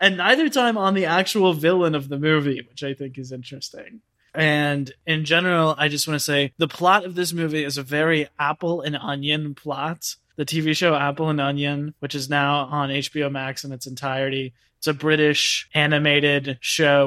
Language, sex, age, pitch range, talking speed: English, male, 20-39, 135-155 Hz, 195 wpm